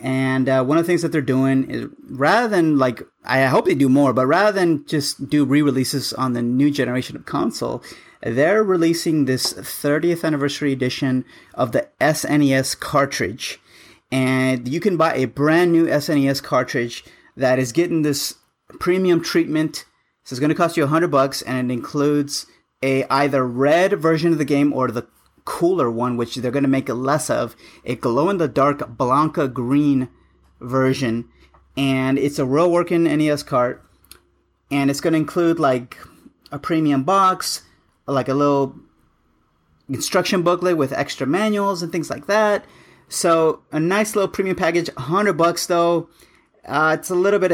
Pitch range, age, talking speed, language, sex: 130-165 Hz, 30-49, 165 wpm, English, male